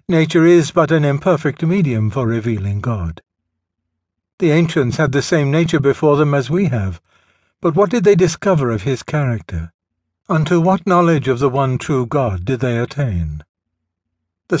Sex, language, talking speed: male, English, 165 wpm